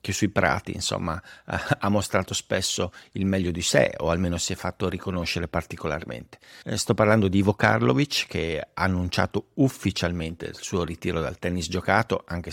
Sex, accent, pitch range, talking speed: male, native, 90-110 Hz, 165 wpm